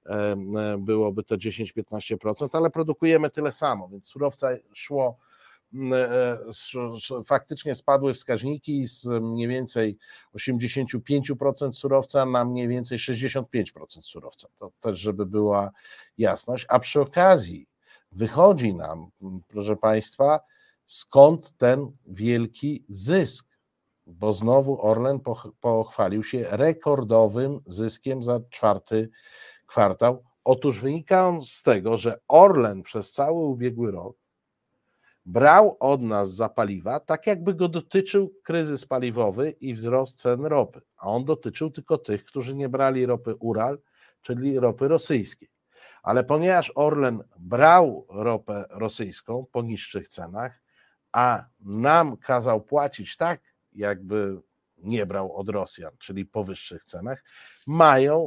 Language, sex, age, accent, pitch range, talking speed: Polish, male, 50-69, native, 110-140 Hz, 115 wpm